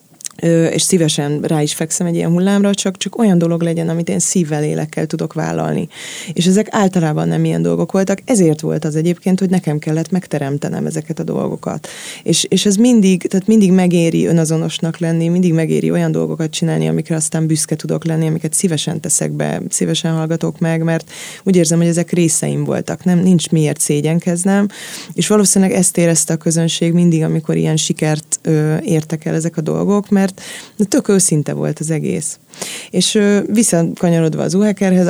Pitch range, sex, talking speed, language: 155-180 Hz, female, 175 wpm, Hungarian